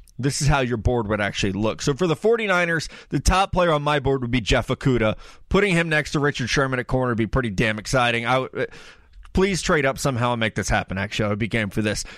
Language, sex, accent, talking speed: English, male, American, 245 wpm